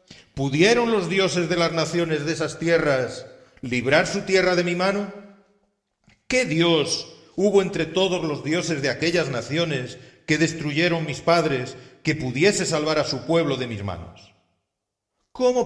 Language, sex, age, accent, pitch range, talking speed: Spanish, male, 40-59, Spanish, 110-165 Hz, 150 wpm